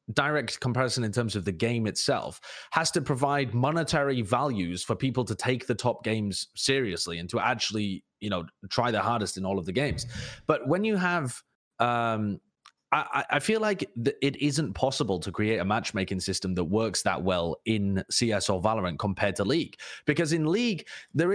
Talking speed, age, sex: 185 wpm, 30-49, male